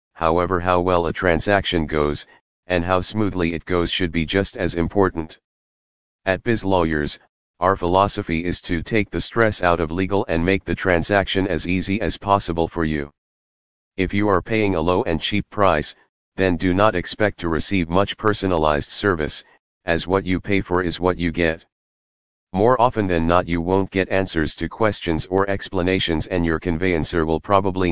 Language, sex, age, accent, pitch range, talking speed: English, male, 40-59, American, 85-95 Hz, 180 wpm